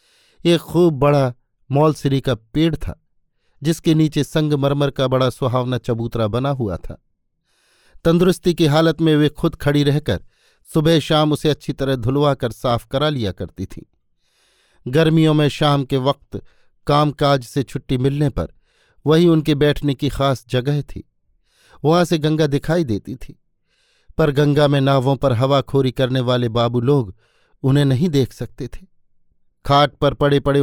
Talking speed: 155 wpm